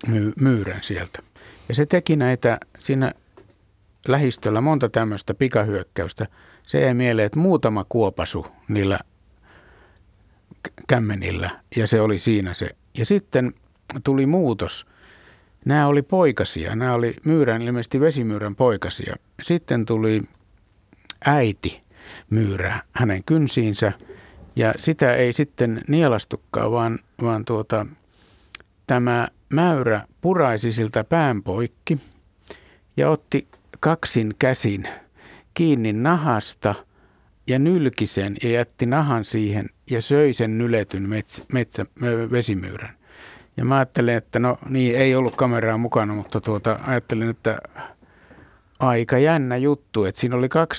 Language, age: Finnish, 60-79